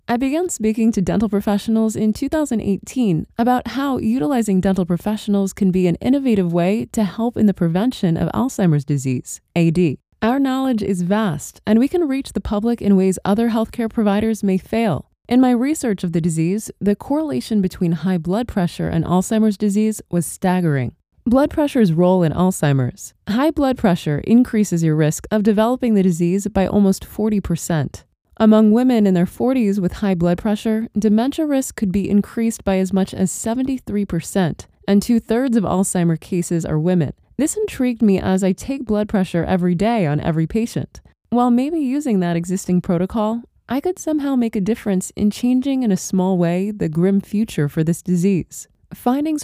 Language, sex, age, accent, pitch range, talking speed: English, female, 20-39, American, 180-230 Hz, 175 wpm